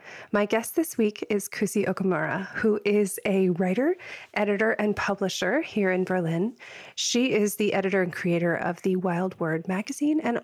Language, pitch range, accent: English, 180-210 Hz, American